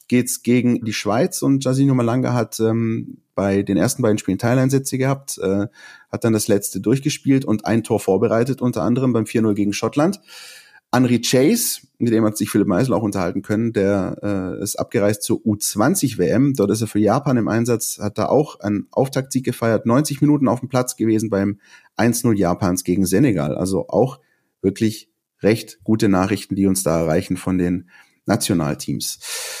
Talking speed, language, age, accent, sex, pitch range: 175 wpm, German, 30-49, German, male, 100-125 Hz